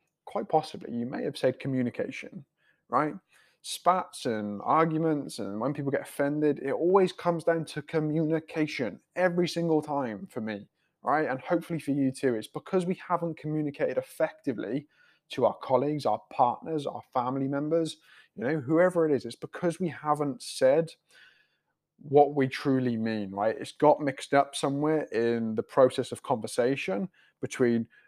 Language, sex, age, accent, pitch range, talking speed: English, male, 20-39, British, 130-170 Hz, 155 wpm